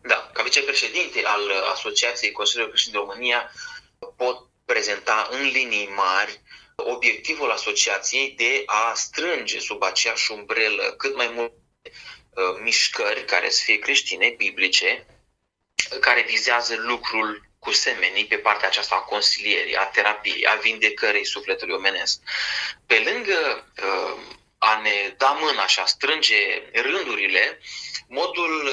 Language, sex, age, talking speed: Romanian, male, 20-39, 125 wpm